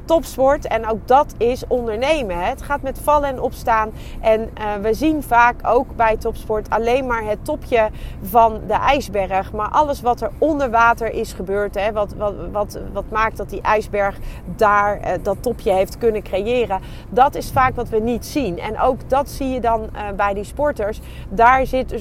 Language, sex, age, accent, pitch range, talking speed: Dutch, female, 30-49, Dutch, 205-255 Hz, 195 wpm